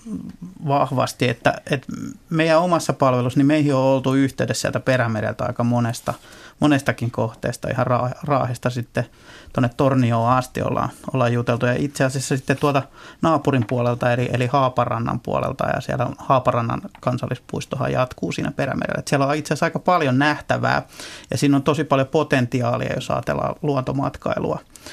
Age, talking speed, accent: 30-49, 145 wpm, native